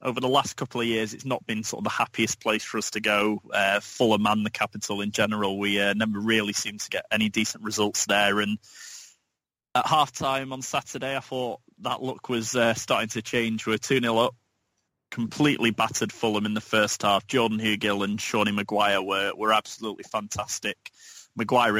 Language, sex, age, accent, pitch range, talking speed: English, male, 20-39, British, 105-120 Hz, 195 wpm